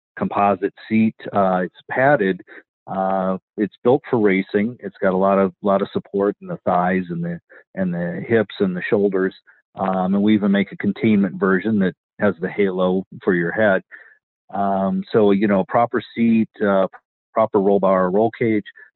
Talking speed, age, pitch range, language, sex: 175 wpm, 40-59, 95-115 Hz, English, male